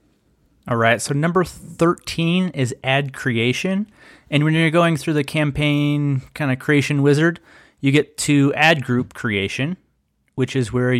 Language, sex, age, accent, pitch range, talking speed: English, male, 30-49, American, 130-170 Hz, 155 wpm